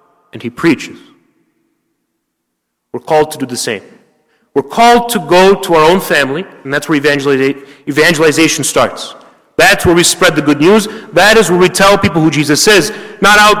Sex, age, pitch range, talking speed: male, 30-49, 160-205 Hz, 175 wpm